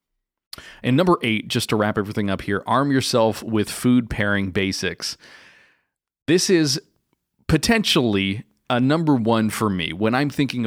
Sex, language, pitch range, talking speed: male, English, 100-130 Hz, 145 wpm